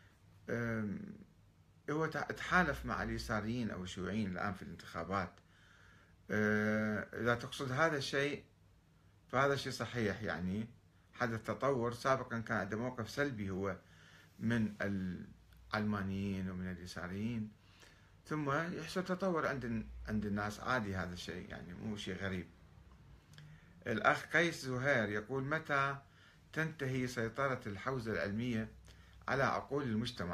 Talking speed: 105 wpm